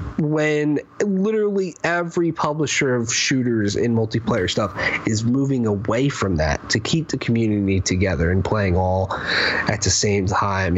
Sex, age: male, 30-49